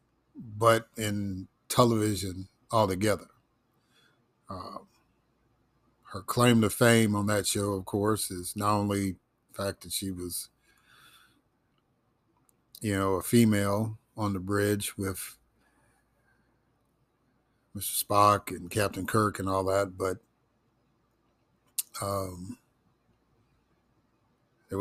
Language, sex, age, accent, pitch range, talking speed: English, male, 50-69, American, 100-120 Hz, 100 wpm